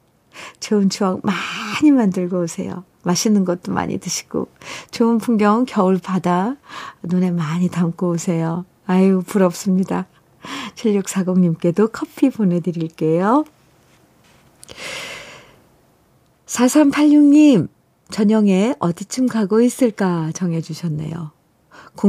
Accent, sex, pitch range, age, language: native, female, 170-250 Hz, 50-69, Korean